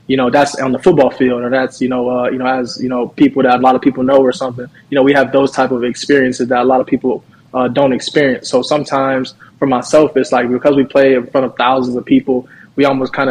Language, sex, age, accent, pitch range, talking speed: English, male, 20-39, American, 125-140 Hz, 270 wpm